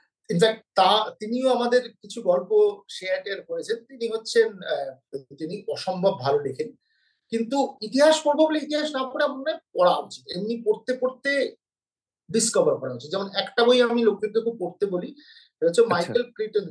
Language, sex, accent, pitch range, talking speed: Bengali, male, native, 195-285 Hz, 35 wpm